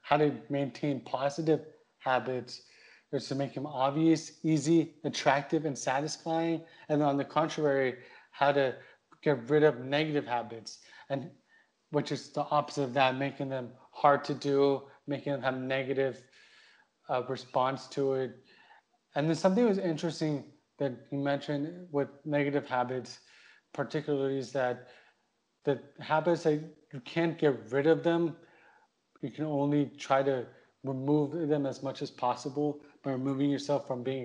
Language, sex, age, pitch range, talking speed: English, male, 30-49, 130-150 Hz, 150 wpm